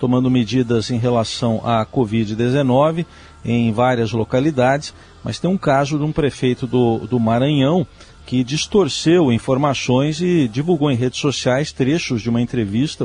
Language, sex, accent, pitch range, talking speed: Portuguese, male, Brazilian, 120-145 Hz, 145 wpm